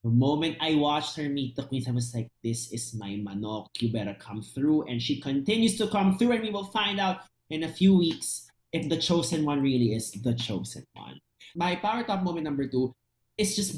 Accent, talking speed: native, 220 wpm